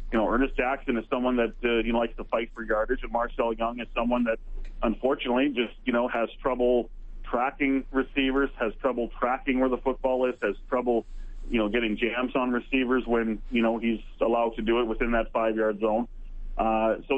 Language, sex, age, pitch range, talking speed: English, male, 40-59, 115-130 Hz, 200 wpm